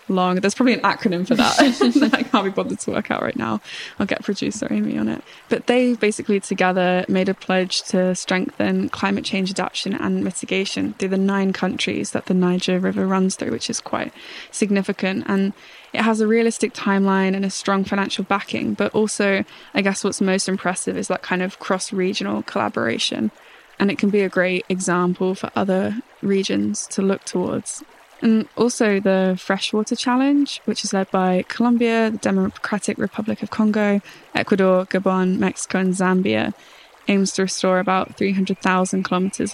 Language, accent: English, British